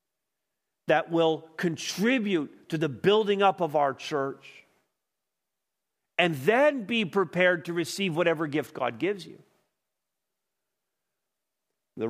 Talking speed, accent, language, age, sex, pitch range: 110 wpm, American, English, 50-69, male, 125-155 Hz